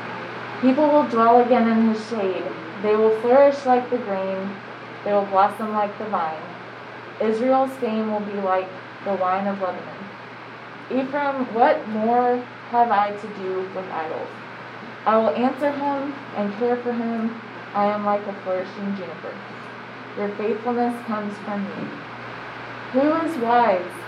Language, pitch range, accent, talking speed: English, 195-245 Hz, American, 145 wpm